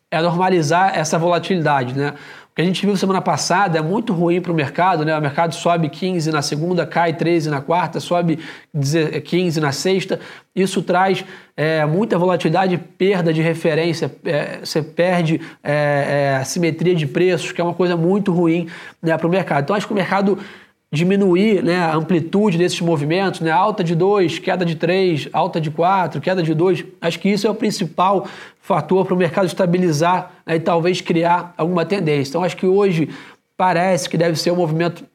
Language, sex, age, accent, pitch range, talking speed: English, male, 20-39, Brazilian, 160-185 Hz, 180 wpm